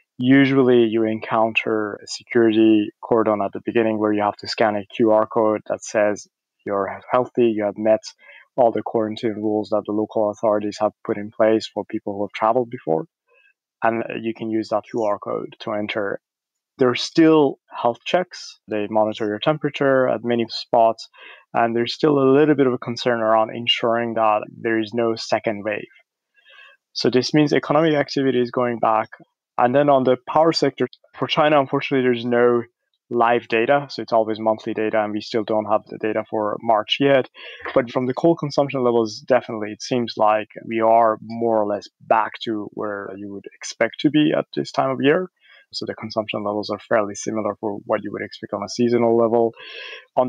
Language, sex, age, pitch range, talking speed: English, male, 20-39, 110-130 Hz, 190 wpm